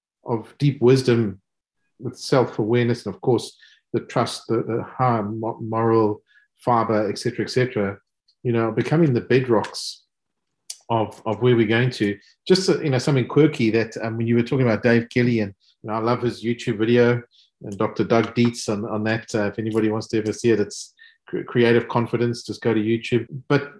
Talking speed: 195 wpm